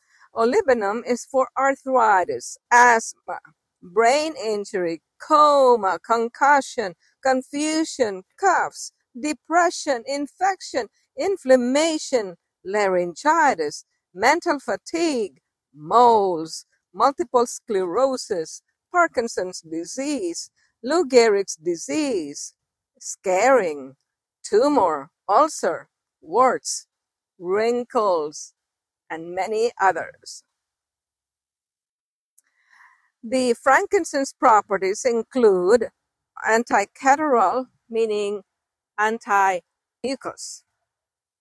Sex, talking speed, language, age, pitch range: female, 60 wpm, English, 50-69, 205-310 Hz